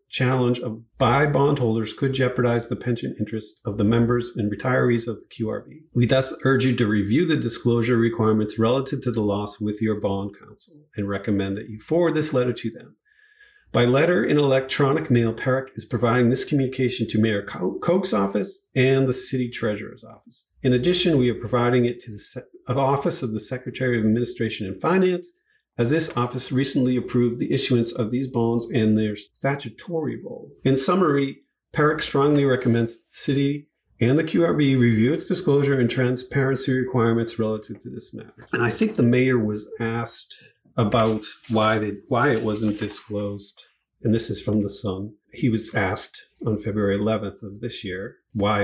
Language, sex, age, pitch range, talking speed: English, male, 50-69, 110-135 Hz, 175 wpm